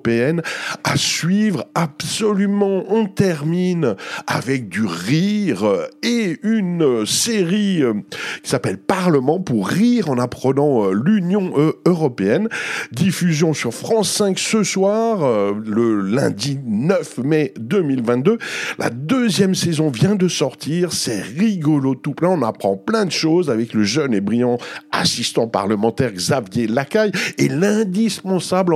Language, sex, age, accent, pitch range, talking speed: French, male, 50-69, French, 140-195 Hz, 120 wpm